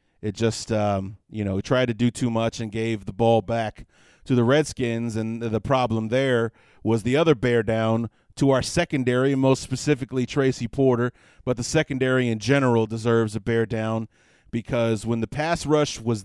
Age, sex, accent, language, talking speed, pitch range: 30-49, male, American, English, 180 wpm, 110-140 Hz